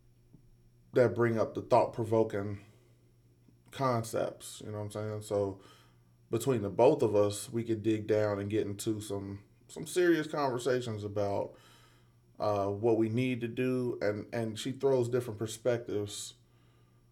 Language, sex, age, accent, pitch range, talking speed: English, male, 20-39, American, 105-120 Hz, 145 wpm